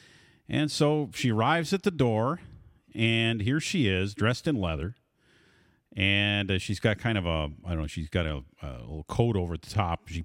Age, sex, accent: 40-59, male, American